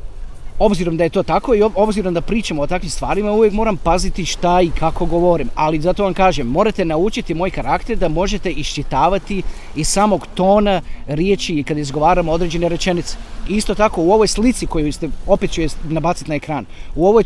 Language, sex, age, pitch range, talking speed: Croatian, male, 30-49, 150-215 Hz, 190 wpm